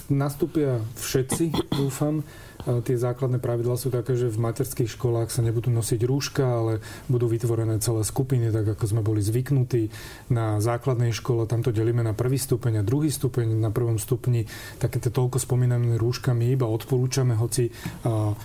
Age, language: 30-49, Slovak